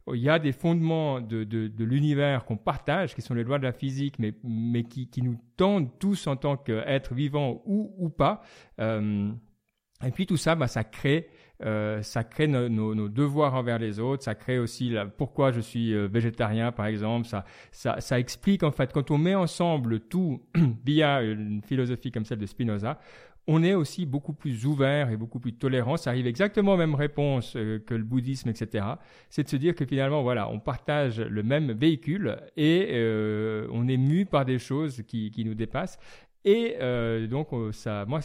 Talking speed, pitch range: 200 wpm, 110-150 Hz